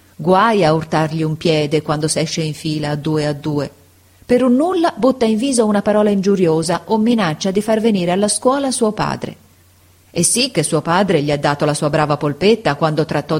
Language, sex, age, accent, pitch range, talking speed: Italian, female, 40-59, native, 150-205 Hz, 205 wpm